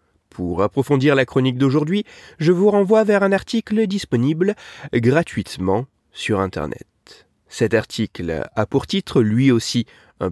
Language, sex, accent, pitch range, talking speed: French, male, French, 110-170 Hz, 135 wpm